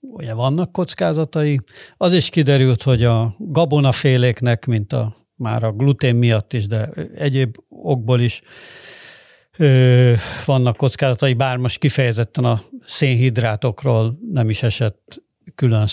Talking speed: 115 wpm